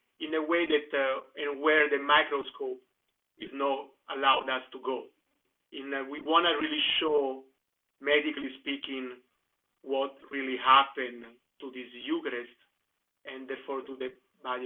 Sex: male